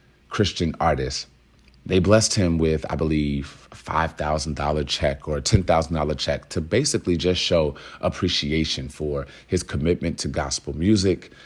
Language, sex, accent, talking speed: English, male, American, 135 wpm